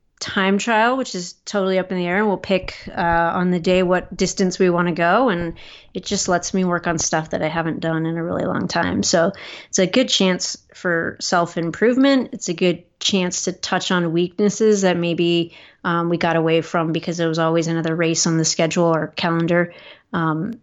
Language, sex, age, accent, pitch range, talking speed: English, female, 30-49, American, 165-195 Hz, 210 wpm